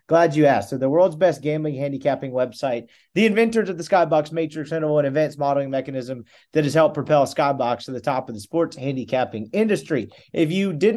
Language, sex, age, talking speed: English, male, 30-49, 200 wpm